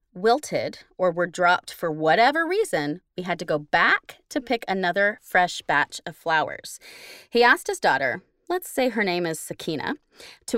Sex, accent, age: female, American, 30-49